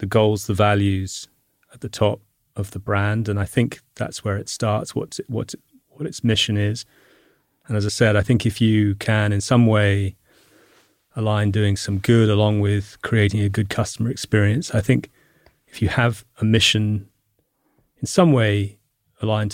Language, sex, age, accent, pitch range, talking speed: English, male, 30-49, British, 105-120 Hz, 175 wpm